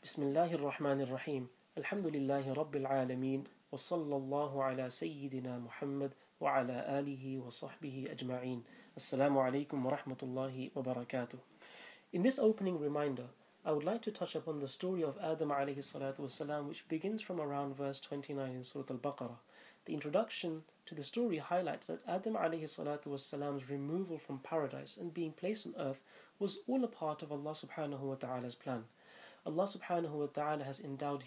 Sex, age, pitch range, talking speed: male, 30-49, 140-170 Hz, 110 wpm